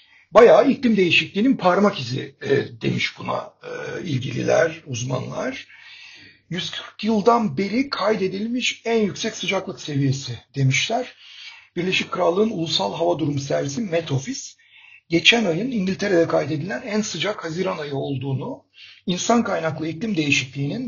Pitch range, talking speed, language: 155-220 Hz, 120 wpm, Turkish